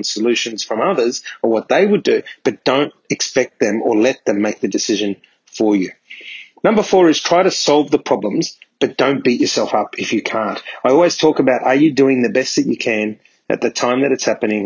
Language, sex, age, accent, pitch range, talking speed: English, male, 30-49, Australian, 115-155 Hz, 220 wpm